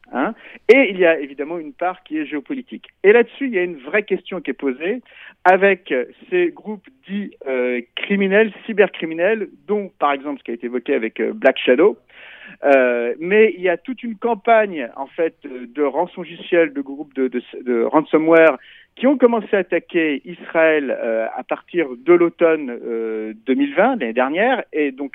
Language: Italian